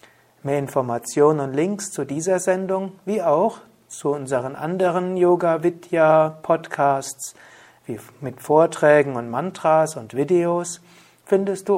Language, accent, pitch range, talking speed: German, German, 140-180 Hz, 105 wpm